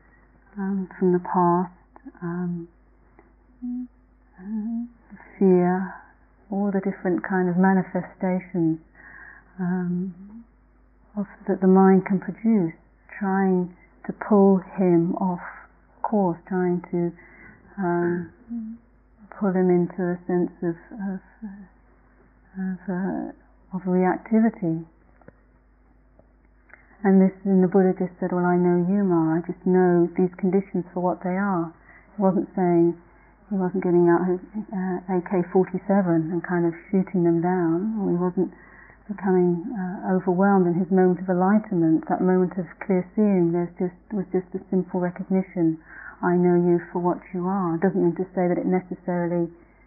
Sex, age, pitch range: female, 40-59, 175-195 Hz